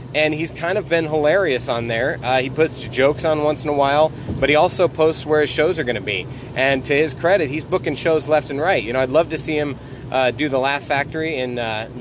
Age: 30-49